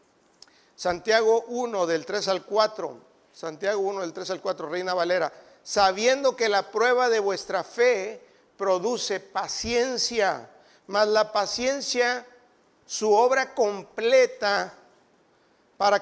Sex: male